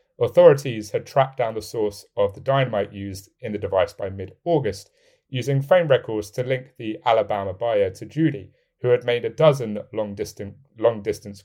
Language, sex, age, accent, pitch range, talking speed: English, male, 30-49, British, 110-165 Hz, 170 wpm